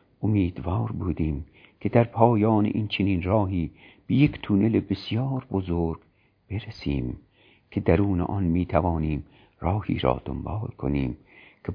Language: Persian